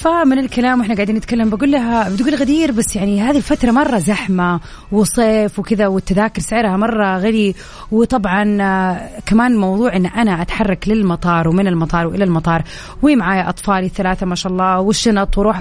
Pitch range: 180-240 Hz